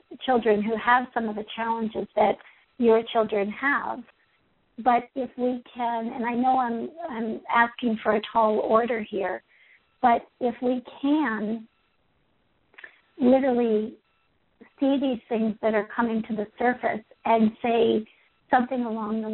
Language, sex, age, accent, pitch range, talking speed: English, female, 50-69, American, 215-250 Hz, 140 wpm